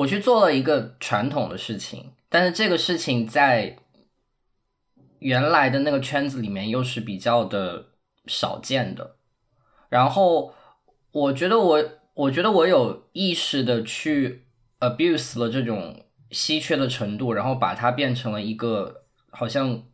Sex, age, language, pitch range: male, 10-29, Chinese, 115-145 Hz